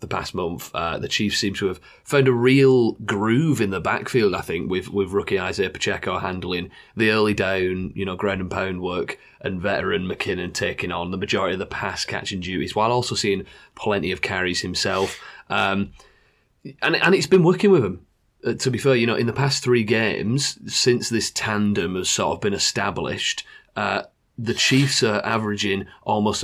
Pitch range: 100-120 Hz